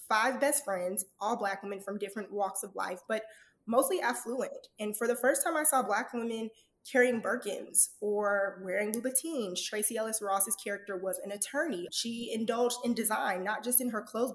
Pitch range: 195-235 Hz